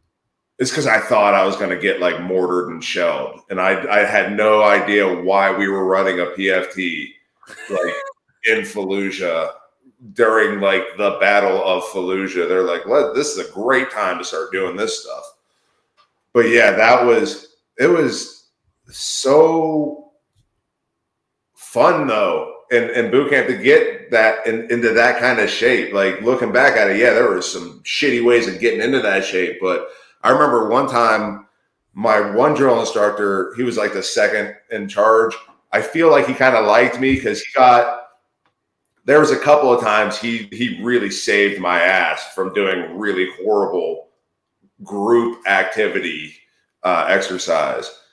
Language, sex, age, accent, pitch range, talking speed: English, male, 30-49, American, 105-155 Hz, 165 wpm